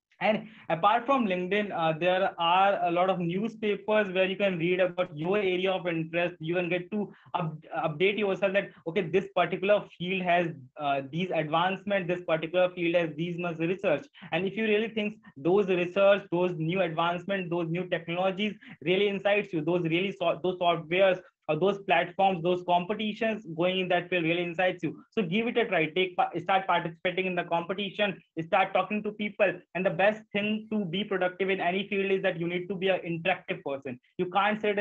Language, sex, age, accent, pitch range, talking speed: English, male, 20-39, Indian, 175-200 Hz, 190 wpm